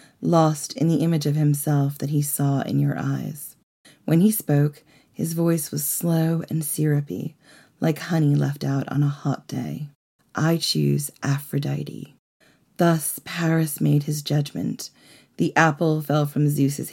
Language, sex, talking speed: English, female, 150 wpm